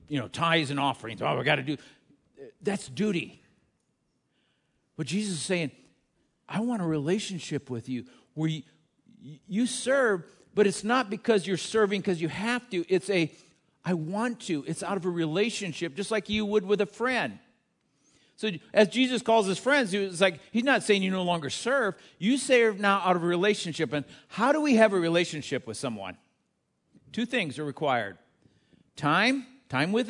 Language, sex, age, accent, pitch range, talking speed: English, male, 50-69, American, 145-220 Hz, 180 wpm